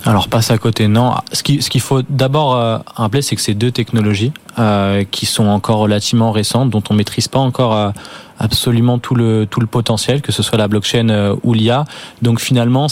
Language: French